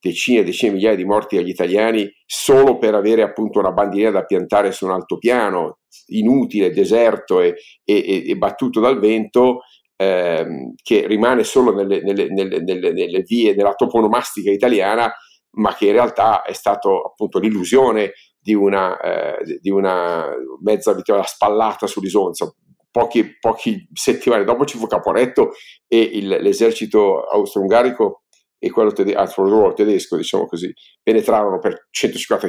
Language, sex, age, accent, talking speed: Italian, male, 50-69, native, 145 wpm